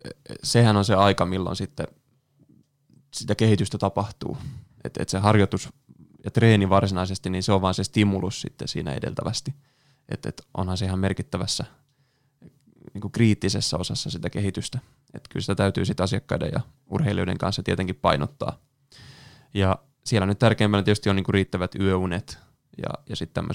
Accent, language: native, Finnish